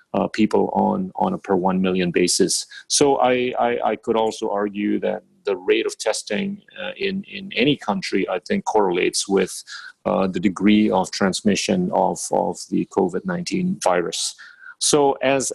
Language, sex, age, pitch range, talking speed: English, male, 30-49, 100-135 Hz, 160 wpm